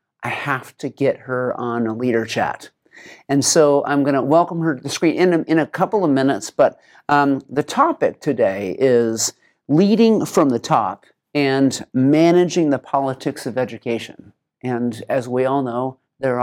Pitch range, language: 120-155 Hz, English